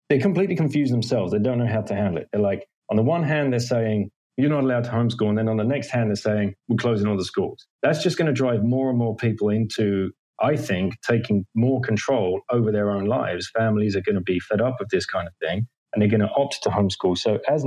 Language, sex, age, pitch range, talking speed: English, male, 30-49, 100-130 Hz, 260 wpm